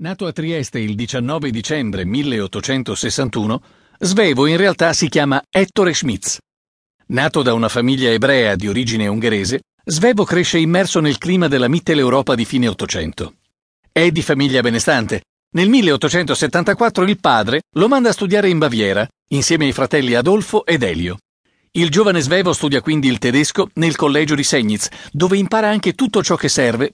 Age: 50-69